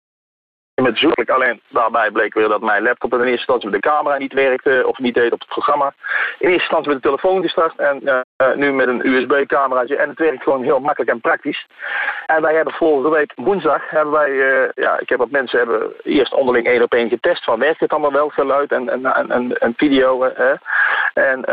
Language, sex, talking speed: Dutch, male, 215 wpm